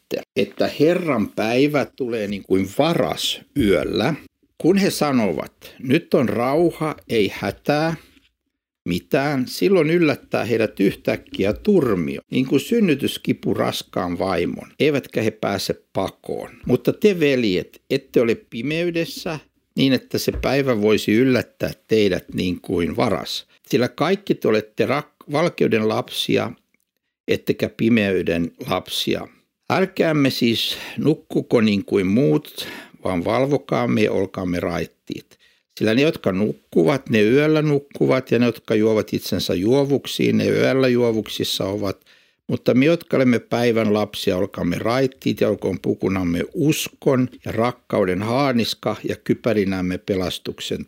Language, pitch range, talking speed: Finnish, 105-145 Hz, 120 wpm